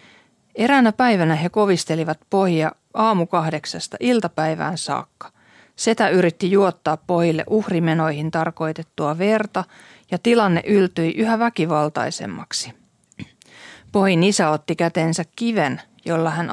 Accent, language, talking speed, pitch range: native, Finnish, 100 wpm, 165-205 Hz